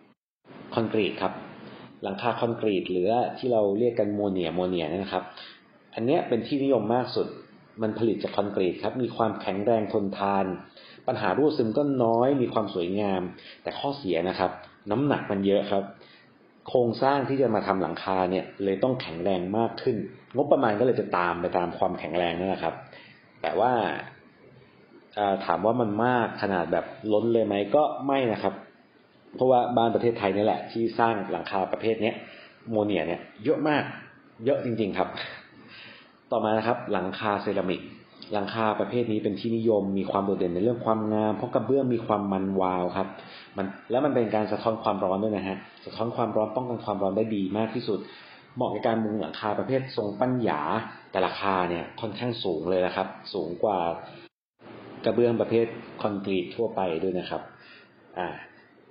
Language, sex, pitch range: English, male, 95-115 Hz